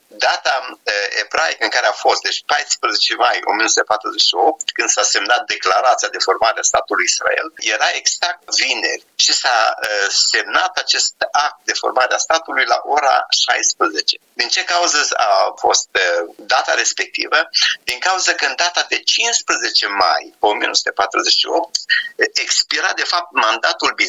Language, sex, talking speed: Romanian, male, 135 wpm